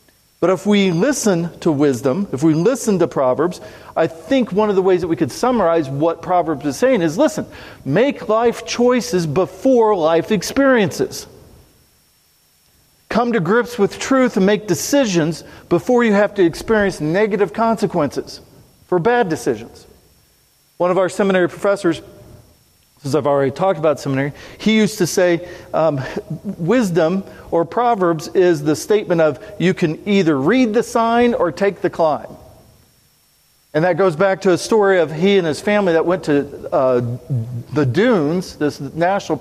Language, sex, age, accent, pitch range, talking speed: English, male, 50-69, American, 160-210 Hz, 160 wpm